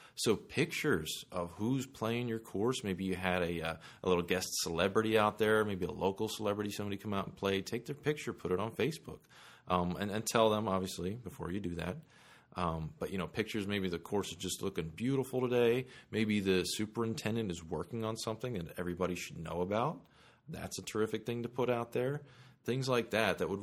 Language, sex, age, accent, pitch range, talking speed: English, male, 30-49, American, 90-115 Hz, 210 wpm